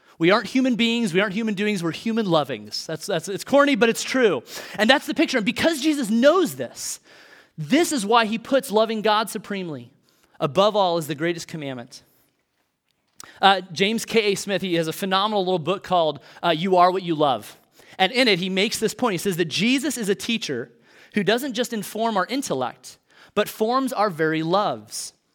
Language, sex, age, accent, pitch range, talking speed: English, male, 30-49, American, 170-220 Hz, 195 wpm